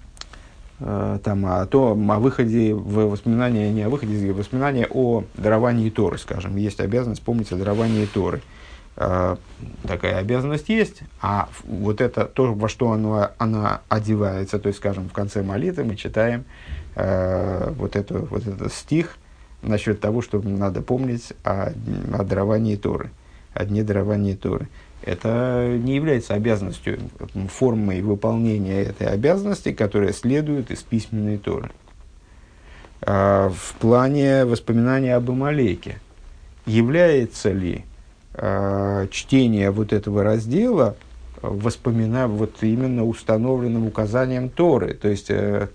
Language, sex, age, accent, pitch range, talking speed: Russian, male, 50-69, native, 100-120 Hz, 120 wpm